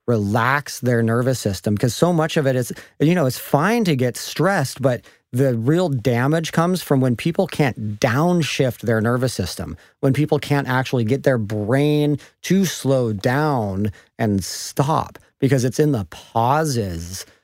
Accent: American